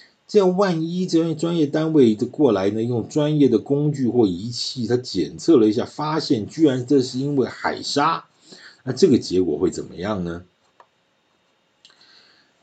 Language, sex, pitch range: Chinese, male, 90-140 Hz